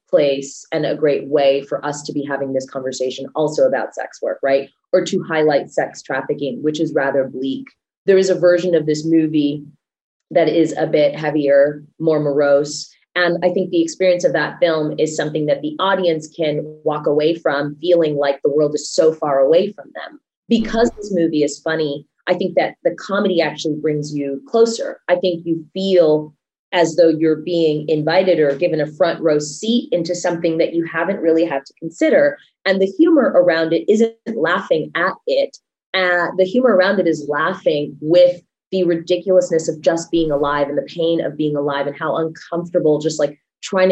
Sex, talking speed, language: female, 190 wpm, English